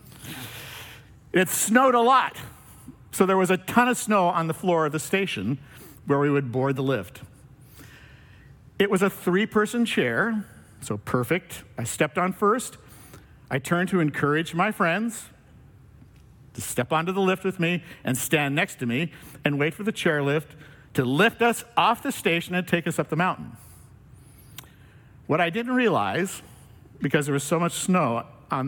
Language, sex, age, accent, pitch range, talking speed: English, male, 50-69, American, 130-185 Hz, 165 wpm